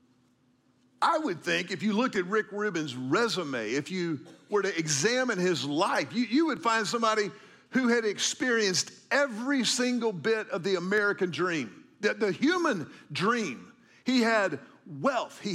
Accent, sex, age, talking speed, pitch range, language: American, male, 50-69, 155 wpm, 180-230 Hz, English